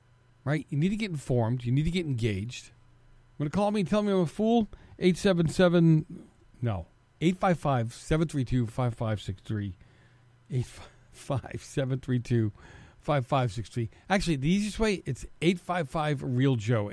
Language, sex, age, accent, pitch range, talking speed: English, male, 50-69, American, 120-155 Hz, 200 wpm